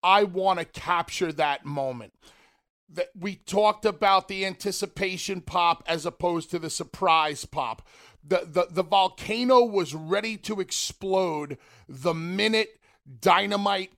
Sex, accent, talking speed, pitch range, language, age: male, American, 125 wpm, 160-210 Hz, English, 40-59